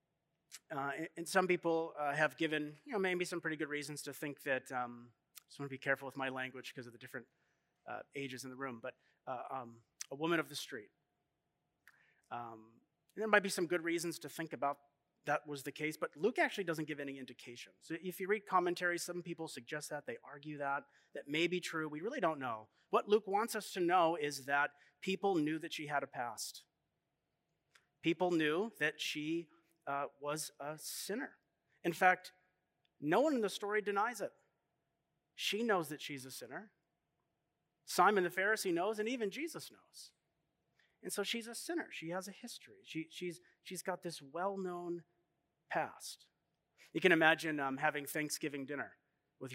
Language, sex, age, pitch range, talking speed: English, male, 30-49, 140-180 Hz, 190 wpm